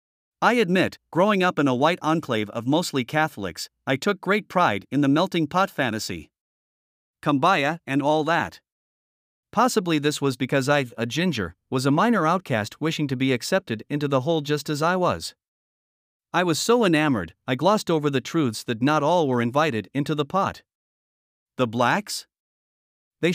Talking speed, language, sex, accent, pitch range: 170 wpm, English, male, American, 130-175 Hz